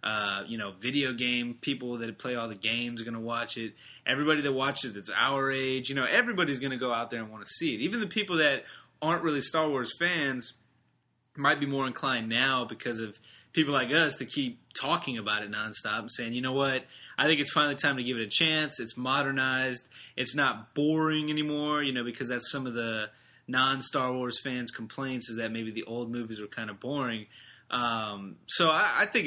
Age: 20-39